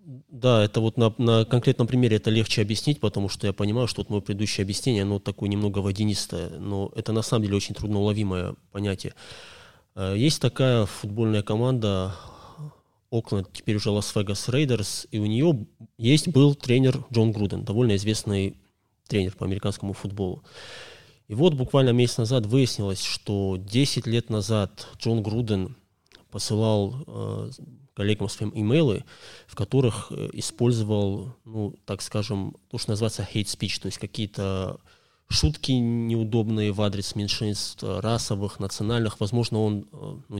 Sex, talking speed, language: male, 140 wpm, Russian